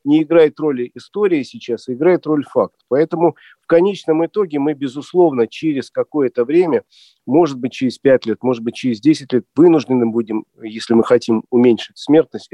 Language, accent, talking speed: Russian, native, 165 wpm